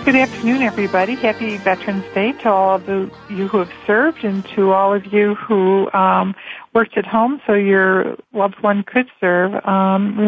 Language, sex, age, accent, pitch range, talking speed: English, female, 60-79, American, 190-210 Hz, 185 wpm